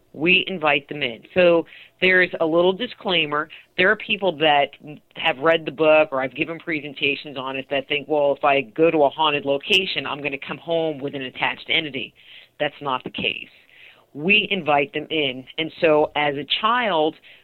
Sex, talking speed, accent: female, 190 wpm, American